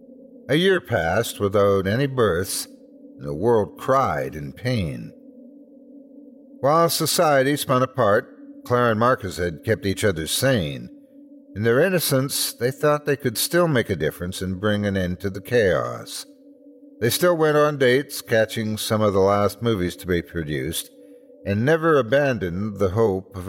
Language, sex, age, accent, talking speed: English, male, 60-79, American, 160 wpm